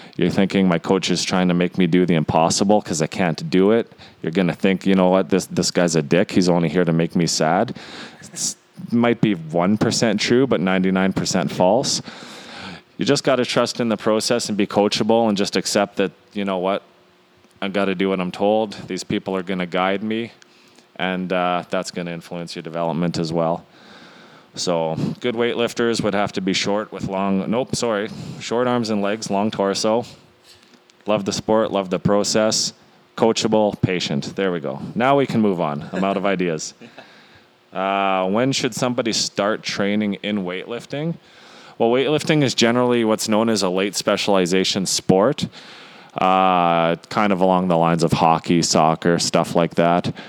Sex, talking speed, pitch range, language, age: male, 180 wpm, 90-110 Hz, English, 20-39